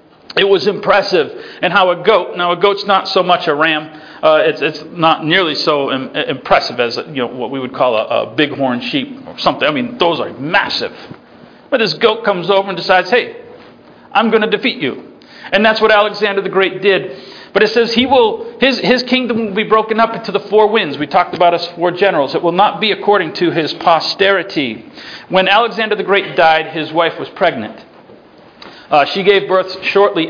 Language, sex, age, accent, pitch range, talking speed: English, male, 40-59, American, 155-210 Hz, 210 wpm